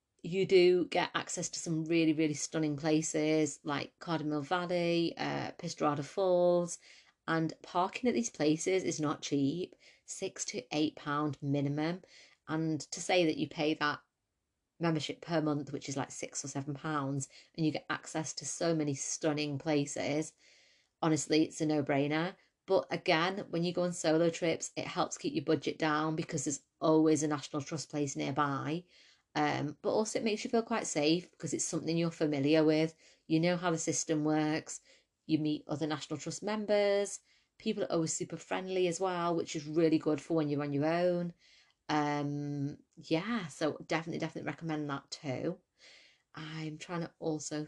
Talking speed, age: 170 wpm, 30-49